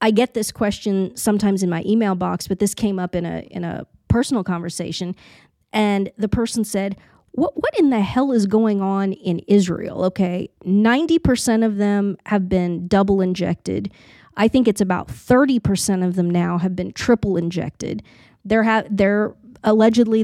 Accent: American